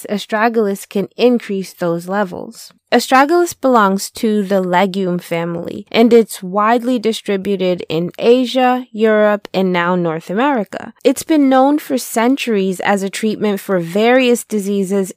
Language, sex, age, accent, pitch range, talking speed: English, female, 20-39, American, 190-235 Hz, 130 wpm